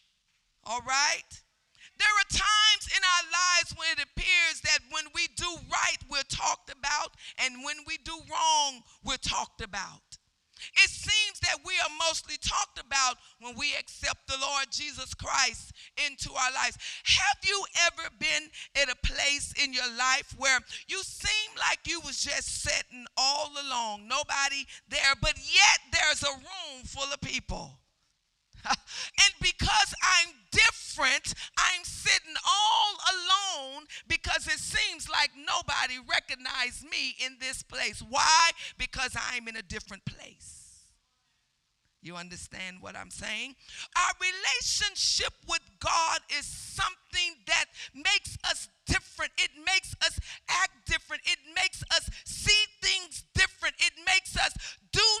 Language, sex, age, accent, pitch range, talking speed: English, female, 50-69, American, 275-375 Hz, 140 wpm